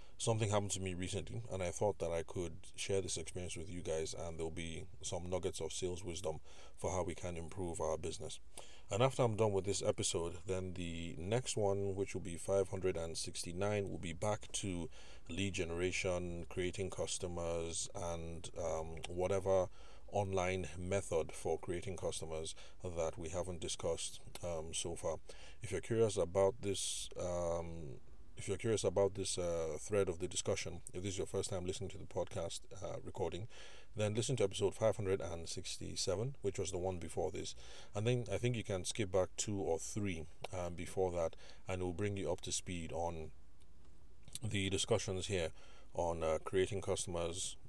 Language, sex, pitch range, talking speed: English, male, 85-100 Hz, 175 wpm